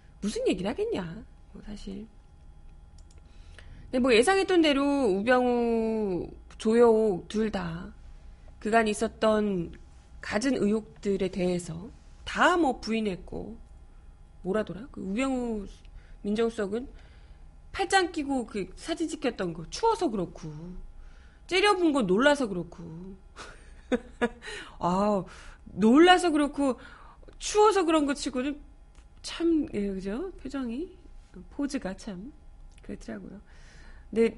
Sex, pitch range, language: female, 185-280 Hz, Korean